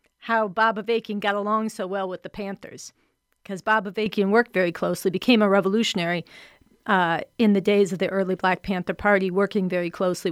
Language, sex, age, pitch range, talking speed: English, female, 40-59, 190-230 Hz, 185 wpm